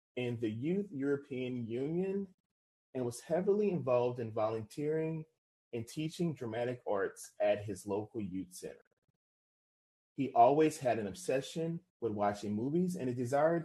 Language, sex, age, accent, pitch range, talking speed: English, male, 30-49, American, 115-160 Hz, 135 wpm